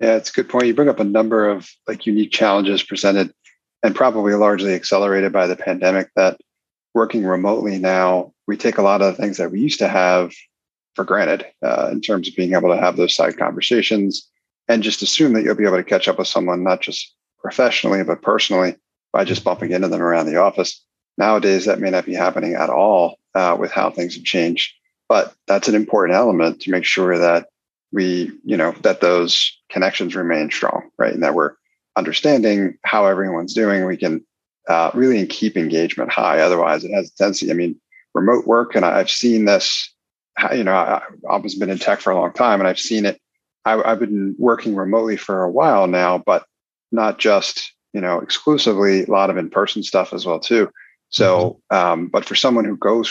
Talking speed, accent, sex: 200 wpm, American, male